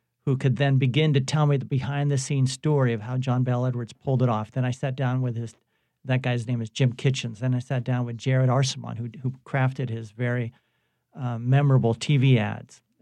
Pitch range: 120-135 Hz